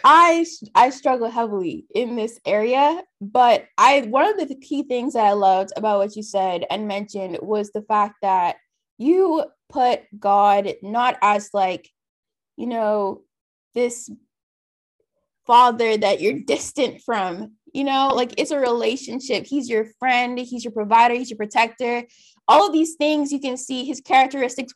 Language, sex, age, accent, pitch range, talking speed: English, female, 20-39, American, 220-280 Hz, 160 wpm